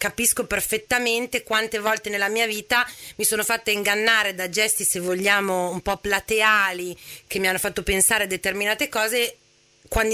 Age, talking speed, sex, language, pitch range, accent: 30-49, 160 wpm, female, Italian, 195-235 Hz, native